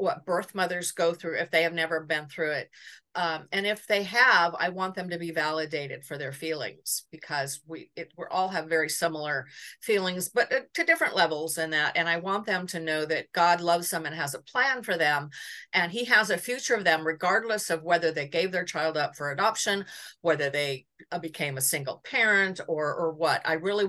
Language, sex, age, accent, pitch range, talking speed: English, female, 50-69, American, 155-190 Hz, 215 wpm